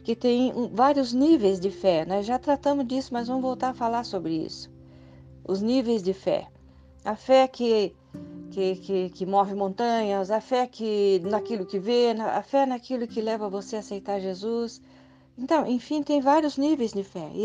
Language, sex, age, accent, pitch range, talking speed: Portuguese, female, 40-59, Brazilian, 175-240 Hz, 170 wpm